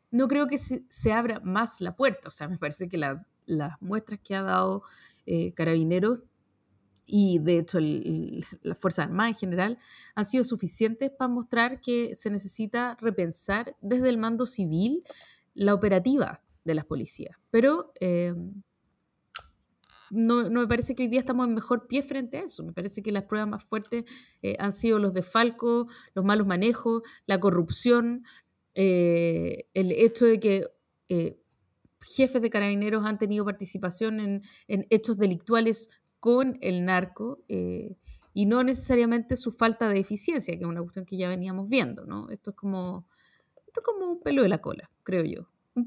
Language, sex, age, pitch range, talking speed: Spanish, female, 30-49, 180-235 Hz, 170 wpm